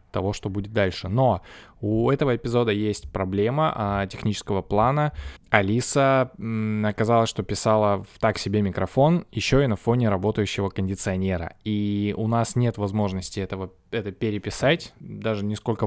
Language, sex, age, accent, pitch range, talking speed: Russian, male, 20-39, native, 95-115 Hz, 145 wpm